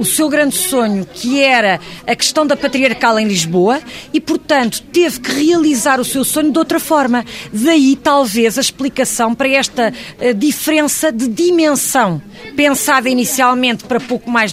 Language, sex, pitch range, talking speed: Portuguese, female, 225-285 Hz, 155 wpm